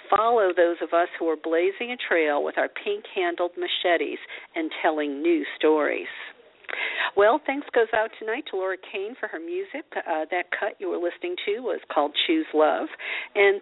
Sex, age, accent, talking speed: female, 50-69, American, 175 wpm